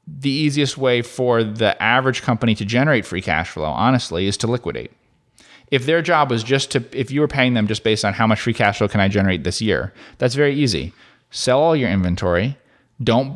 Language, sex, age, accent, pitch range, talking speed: English, male, 30-49, American, 95-125 Hz, 215 wpm